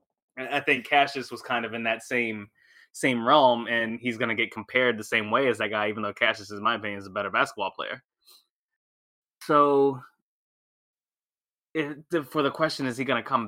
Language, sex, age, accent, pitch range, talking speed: English, male, 20-39, American, 115-135 Hz, 195 wpm